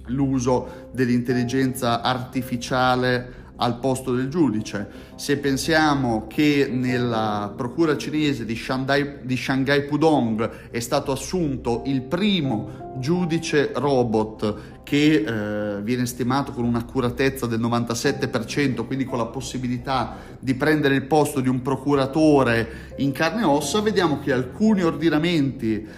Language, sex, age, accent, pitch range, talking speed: Italian, male, 30-49, native, 120-150 Hz, 120 wpm